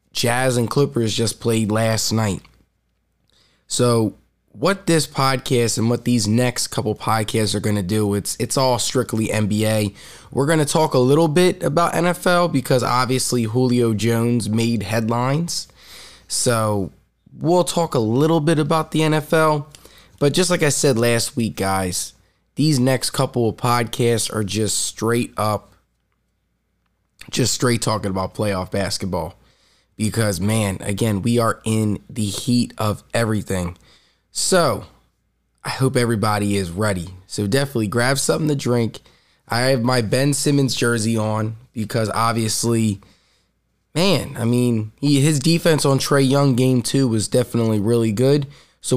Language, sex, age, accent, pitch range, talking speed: English, male, 20-39, American, 110-135 Hz, 145 wpm